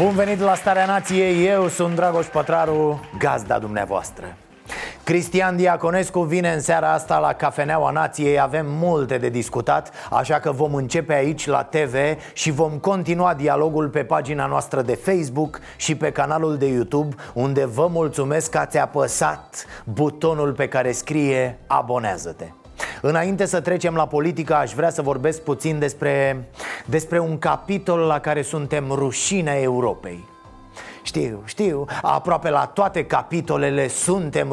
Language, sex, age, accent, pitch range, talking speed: Romanian, male, 30-49, native, 140-170 Hz, 140 wpm